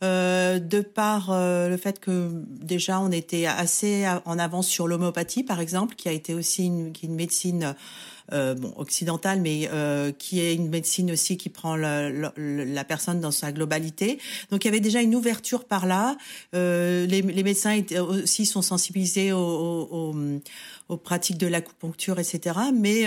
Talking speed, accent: 185 wpm, French